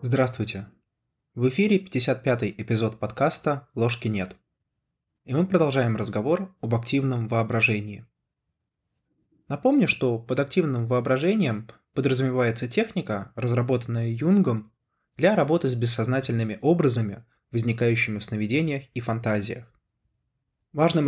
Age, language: 20-39, Russian